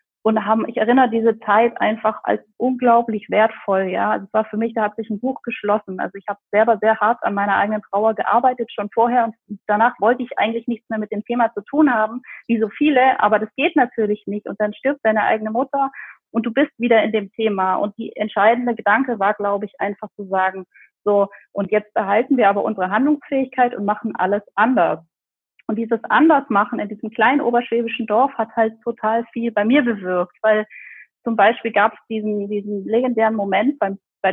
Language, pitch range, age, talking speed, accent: German, 210-245 Hz, 30-49, 205 wpm, German